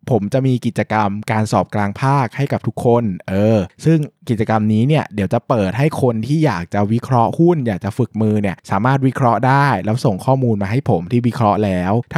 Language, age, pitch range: Thai, 20-39, 105-140 Hz